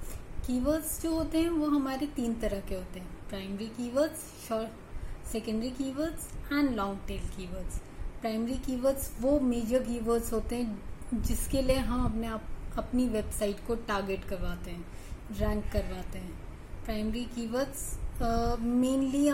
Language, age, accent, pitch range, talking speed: Hindi, 20-39, native, 220-260 Hz, 145 wpm